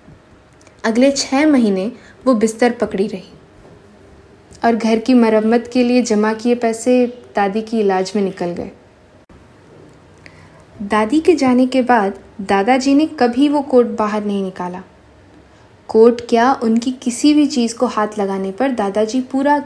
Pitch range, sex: 200-250 Hz, female